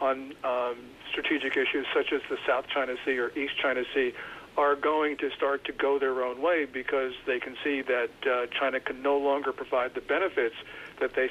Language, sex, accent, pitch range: English, male, American, 130-170 Hz